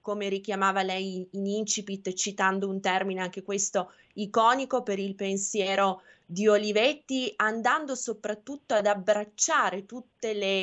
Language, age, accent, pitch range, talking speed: Italian, 20-39, native, 185-215 Hz, 125 wpm